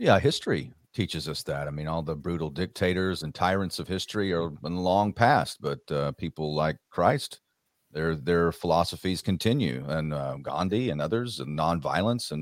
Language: English